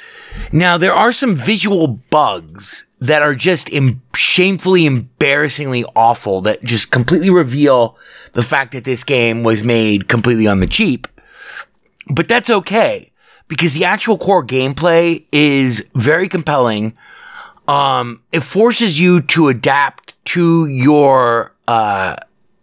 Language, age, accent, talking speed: English, 30-49, American, 125 wpm